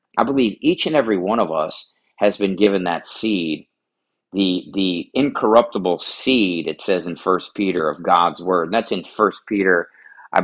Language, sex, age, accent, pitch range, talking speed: English, male, 40-59, American, 90-105 Hz, 180 wpm